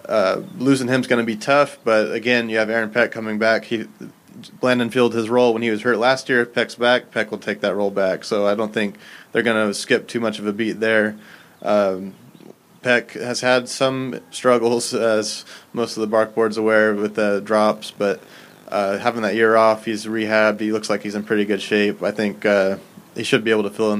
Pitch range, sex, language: 105-115 Hz, male, English